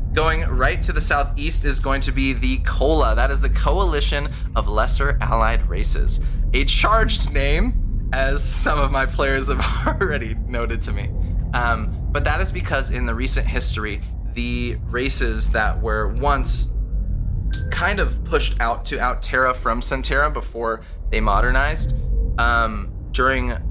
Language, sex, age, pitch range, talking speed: English, male, 20-39, 80-115 Hz, 150 wpm